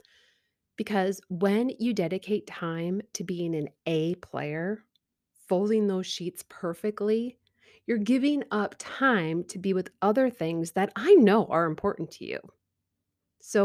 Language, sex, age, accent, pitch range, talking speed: English, female, 30-49, American, 170-235 Hz, 135 wpm